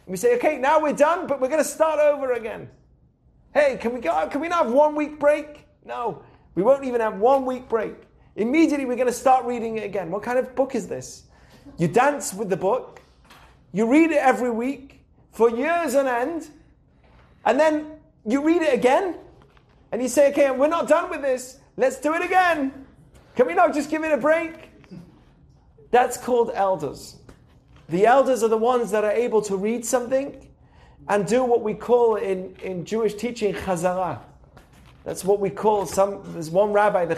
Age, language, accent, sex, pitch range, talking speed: 30-49, English, British, male, 200-275 Hz, 195 wpm